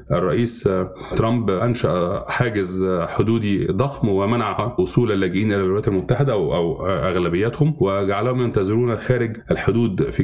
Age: 30-49